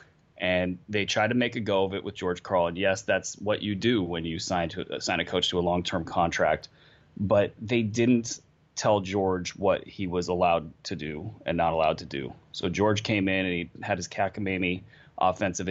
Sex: male